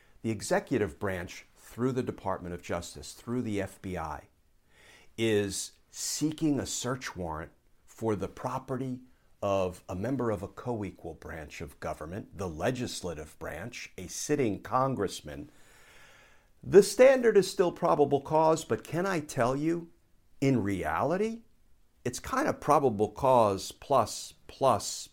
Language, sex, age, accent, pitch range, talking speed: English, male, 50-69, American, 105-140 Hz, 130 wpm